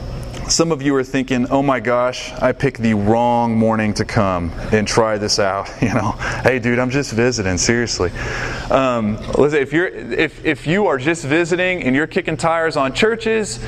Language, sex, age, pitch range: English, male, 30-49, 115-145 Hz